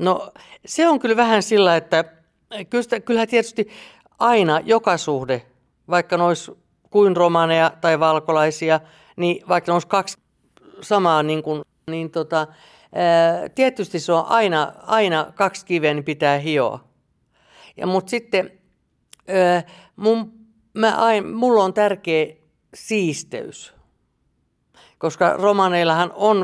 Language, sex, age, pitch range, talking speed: Finnish, female, 60-79, 155-195 Hz, 120 wpm